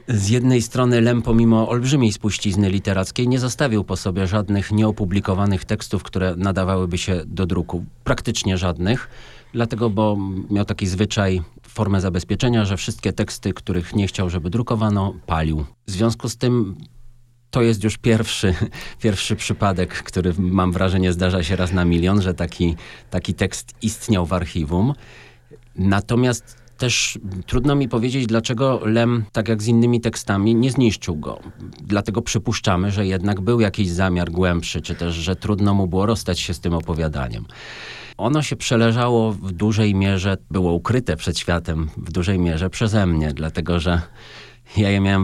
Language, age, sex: Polish, 40-59, male